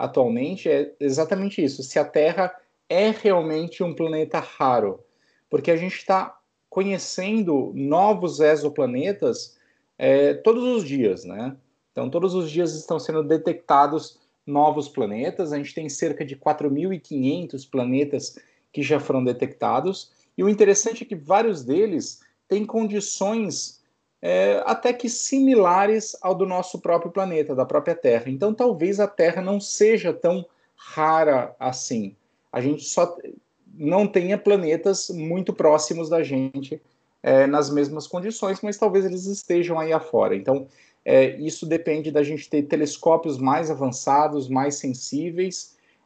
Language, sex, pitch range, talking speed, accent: Portuguese, male, 145-195 Hz, 135 wpm, Brazilian